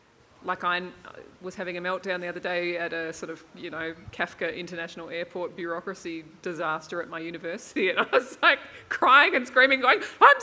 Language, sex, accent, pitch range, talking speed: English, female, Australian, 170-215 Hz, 185 wpm